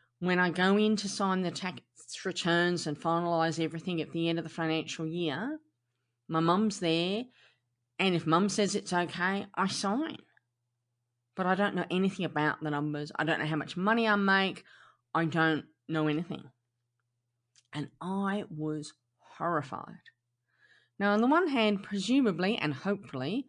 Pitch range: 145-210 Hz